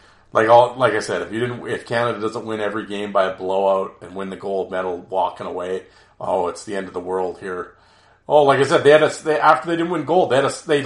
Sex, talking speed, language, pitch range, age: male, 270 wpm, English, 95-130 Hz, 40-59